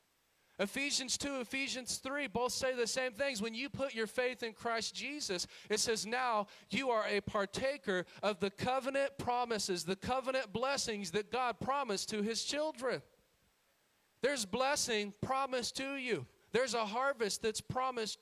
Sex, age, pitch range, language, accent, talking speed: male, 40-59, 185-245 Hz, English, American, 155 wpm